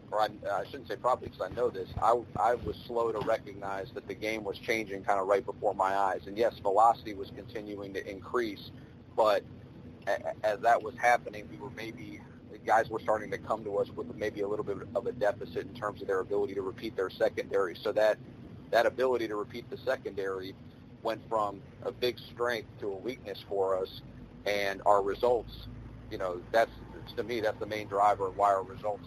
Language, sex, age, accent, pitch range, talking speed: English, male, 40-59, American, 100-130 Hz, 205 wpm